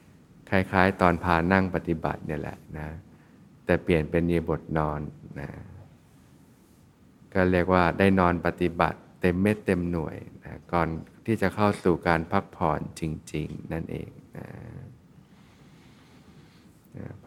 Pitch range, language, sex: 85-90 Hz, Thai, male